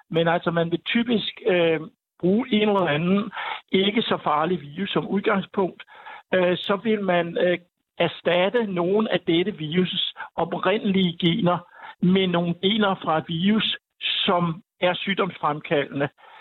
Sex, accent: male, native